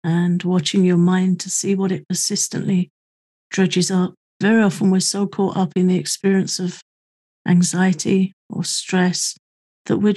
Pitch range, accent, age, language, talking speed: 175-195 Hz, British, 50-69, English, 155 wpm